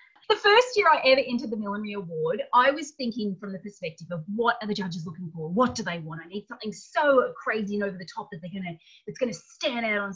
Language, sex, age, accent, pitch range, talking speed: English, female, 30-49, Australian, 205-315 Hz, 255 wpm